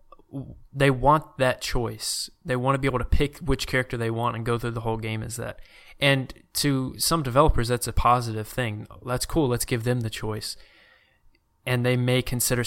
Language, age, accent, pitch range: English, 20-39, American, 115-135 Hz